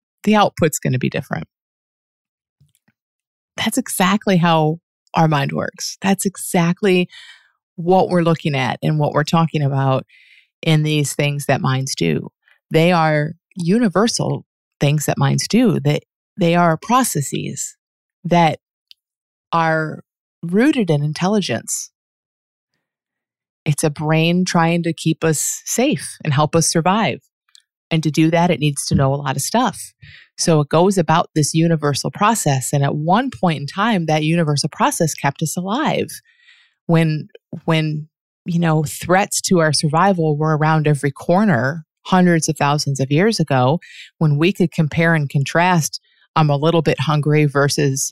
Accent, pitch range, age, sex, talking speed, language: American, 150-190 Hz, 30-49, female, 150 wpm, English